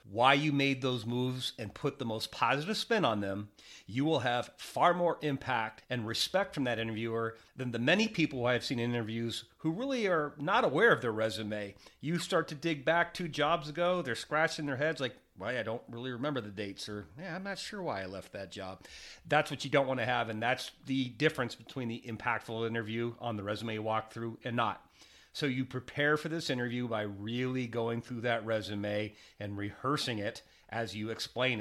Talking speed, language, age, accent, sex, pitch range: 205 wpm, English, 40-59, American, male, 115-150 Hz